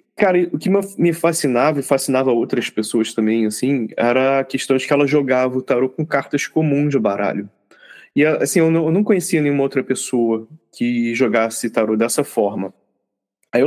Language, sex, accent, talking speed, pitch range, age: Portuguese, male, Brazilian, 170 wpm, 115-145 Hz, 20-39